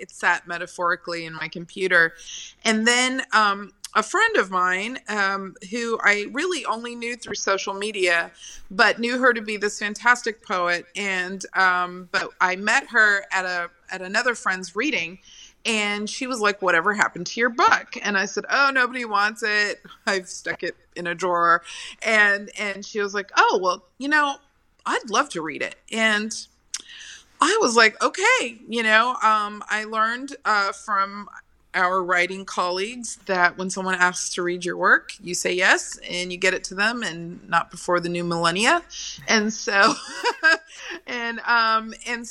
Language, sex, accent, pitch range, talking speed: English, female, American, 185-235 Hz, 170 wpm